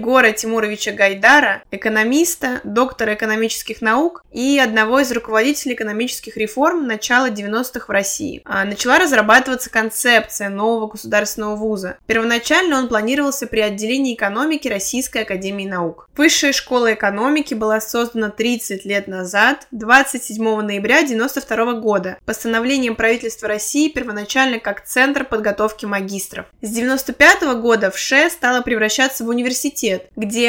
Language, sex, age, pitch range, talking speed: Russian, female, 20-39, 215-260 Hz, 120 wpm